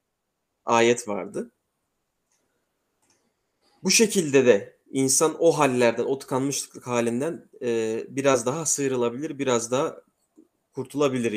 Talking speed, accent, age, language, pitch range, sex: 90 wpm, native, 30-49, Turkish, 125-150 Hz, male